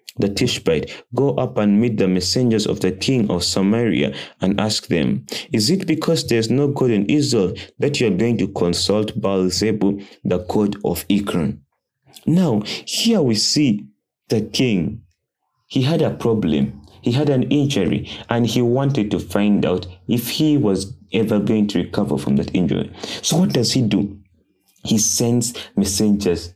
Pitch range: 100-145 Hz